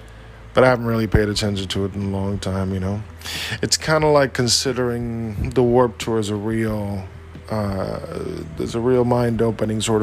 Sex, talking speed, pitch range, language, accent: male, 185 wpm, 90-110 Hz, English, American